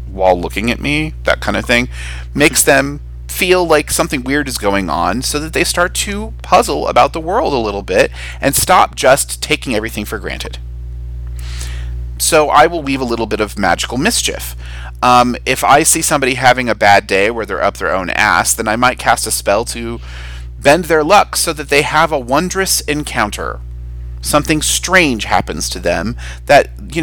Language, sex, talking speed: English, male, 190 wpm